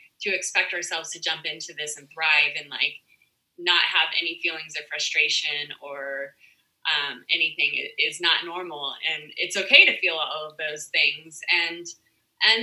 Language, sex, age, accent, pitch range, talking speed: English, female, 20-39, American, 155-210 Hz, 165 wpm